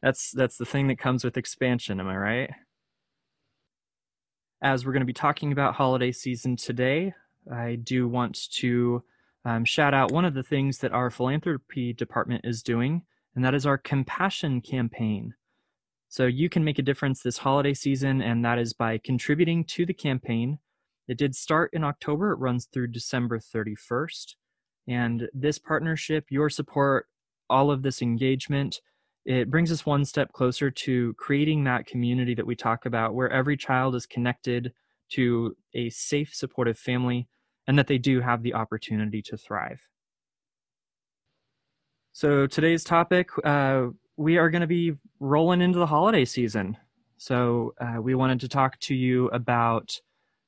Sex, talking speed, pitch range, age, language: male, 160 wpm, 120-145 Hz, 20-39, English